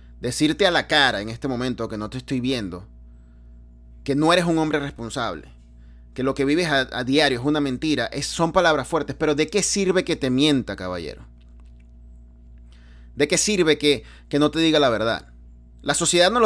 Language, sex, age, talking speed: Spanish, male, 30-49, 185 wpm